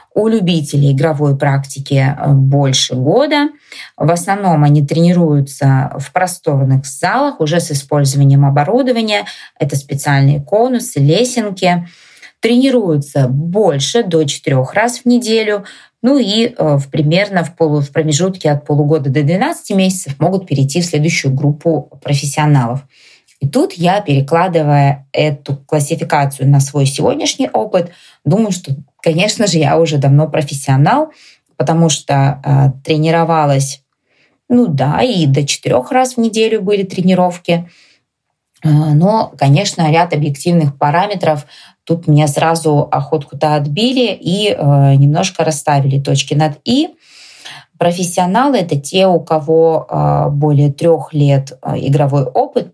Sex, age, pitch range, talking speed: female, 20-39, 145-190 Hz, 125 wpm